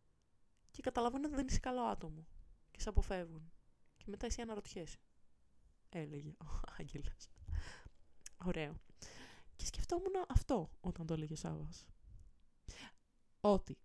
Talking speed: 115 wpm